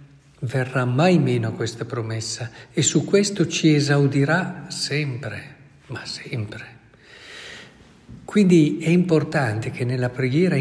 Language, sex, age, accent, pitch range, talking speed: Italian, male, 50-69, native, 115-160 Hz, 115 wpm